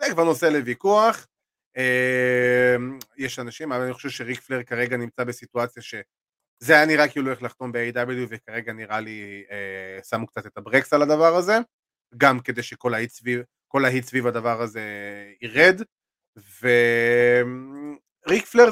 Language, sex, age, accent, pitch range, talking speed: Hebrew, male, 30-49, native, 115-140 Hz, 125 wpm